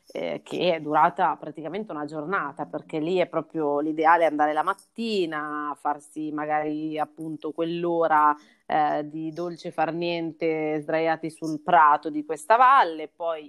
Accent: native